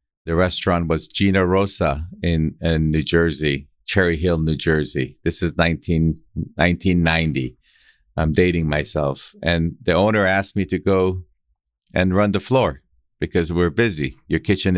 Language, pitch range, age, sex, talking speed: English, 80-95 Hz, 50-69, male, 140 wpm